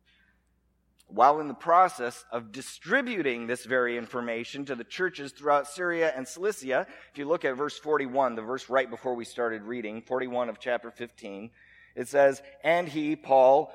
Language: English